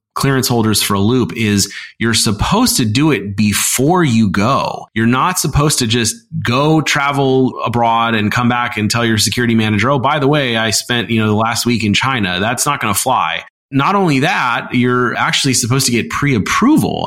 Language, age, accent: English, 30-49, American